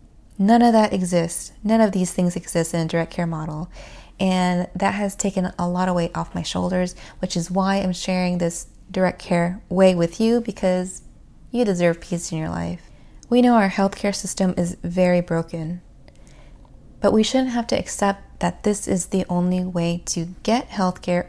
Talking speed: 185 wpm